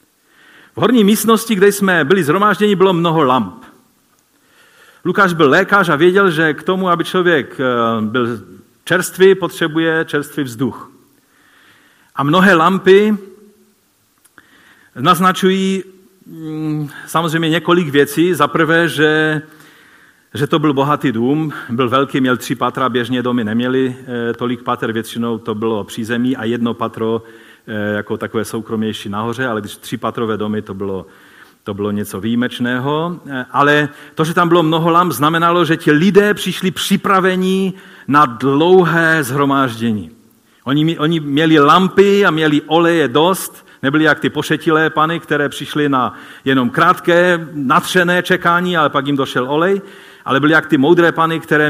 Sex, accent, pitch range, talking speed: male, native, 125-175 Hz, 140 wpm